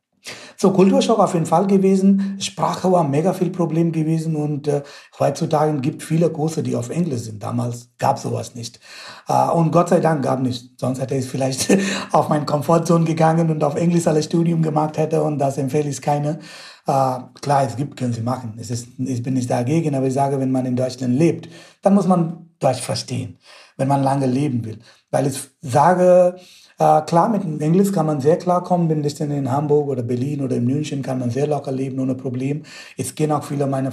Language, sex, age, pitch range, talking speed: German, male, 60-79, 130-170 Hz, 210 wpm